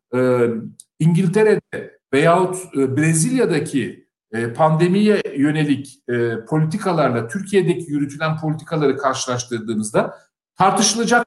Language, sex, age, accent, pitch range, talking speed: German, male, 50-69, Turkish, 140-195 Hz, 60 wpm